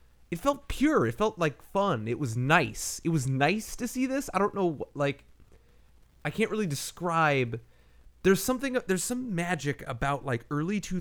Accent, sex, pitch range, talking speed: American, male, 115-165 Hz, 175 wpm